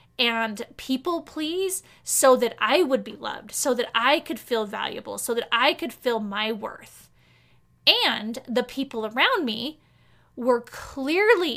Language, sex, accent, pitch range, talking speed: English, female, American, 220-260 Hz, 150 wpm